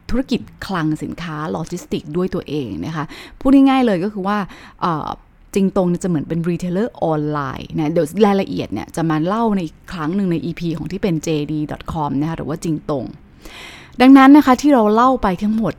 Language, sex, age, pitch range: Thai, female, 20-39, 160-210 Hz